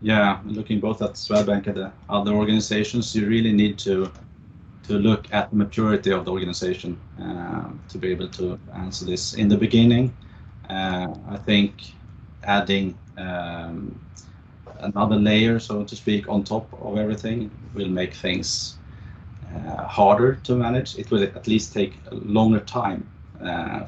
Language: English